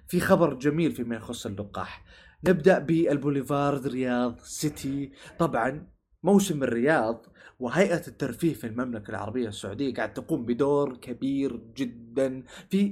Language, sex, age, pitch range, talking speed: Arabic, male, 20-39, 120-170 Hz, 115 wpm